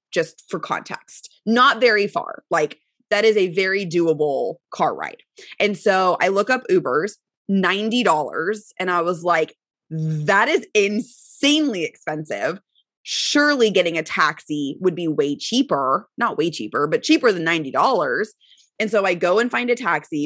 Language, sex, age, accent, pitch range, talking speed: English, female, 20-39, American, 175-255 Hz, 155 wpm